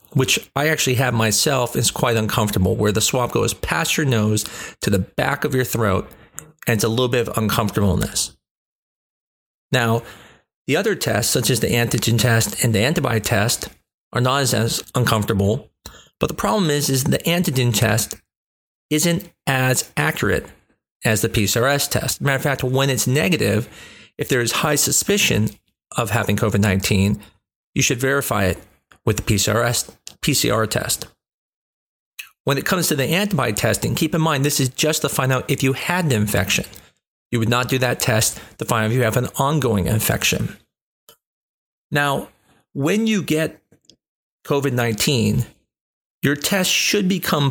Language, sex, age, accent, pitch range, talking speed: English, male, 40-59, American, 110-145 Hz, 165 wpm